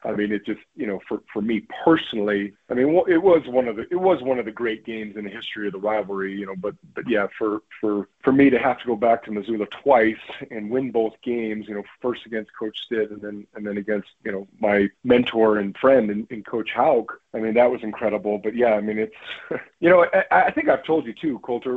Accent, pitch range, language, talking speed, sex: American, 105-155 Hz, English, 255 wpm, male